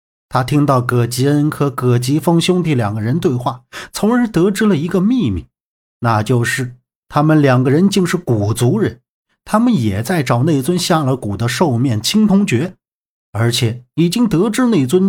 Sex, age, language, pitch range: male, 50-69, Chinese, 120-175 Hz